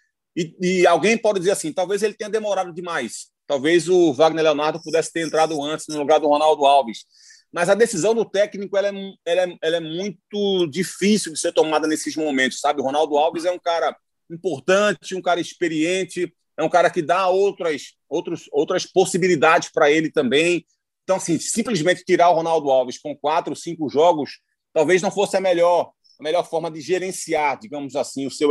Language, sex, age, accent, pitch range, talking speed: Portuguese, male, 30-49, Brazilian, 155-195 Hz, 190 wpm